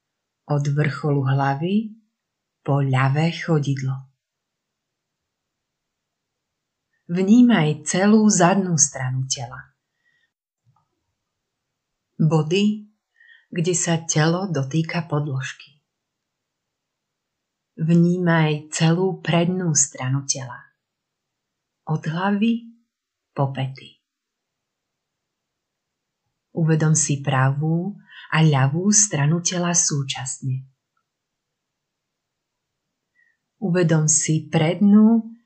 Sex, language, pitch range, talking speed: female, Slovak, 140-180 Hz, 65 wpm